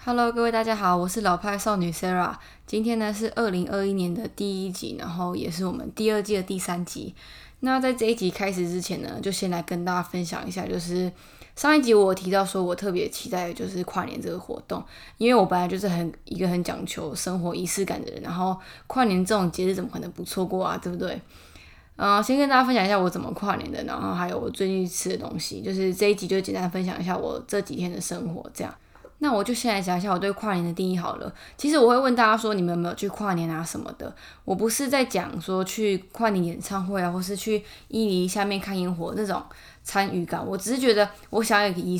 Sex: female